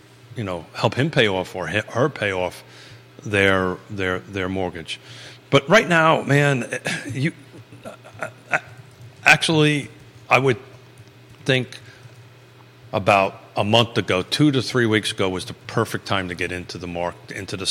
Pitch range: 100-130 Hz